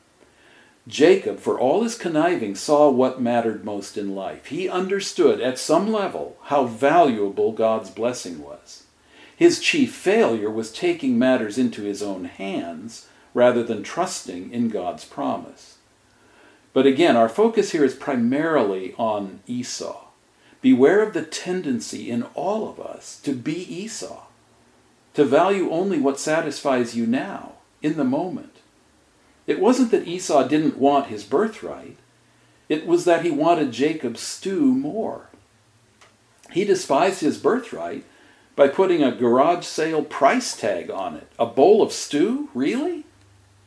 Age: 50-69